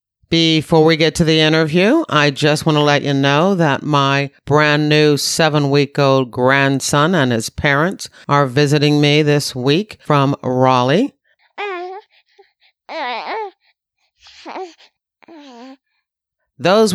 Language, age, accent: English, 50-69, American